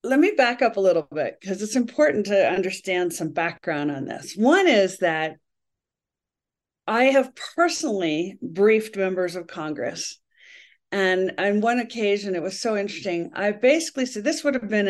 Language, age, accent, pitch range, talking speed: English, 50-69, American, 185-245 Hz, 165 wpm